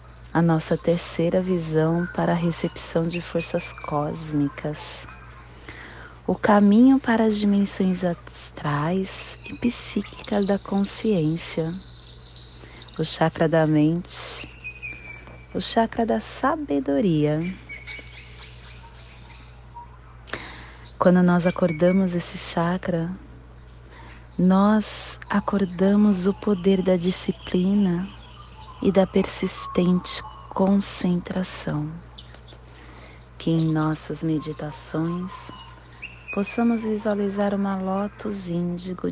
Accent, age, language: Brazilian, 30-49, Portuguese